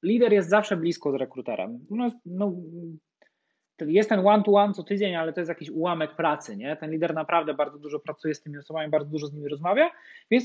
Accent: native